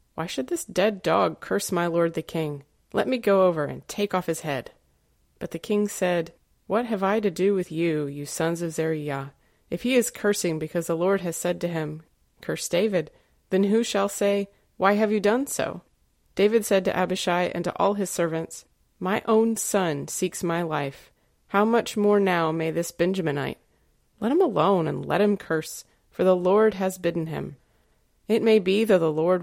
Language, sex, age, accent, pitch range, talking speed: English, female, 30-49, American, 165-200 Hz, 200 wpm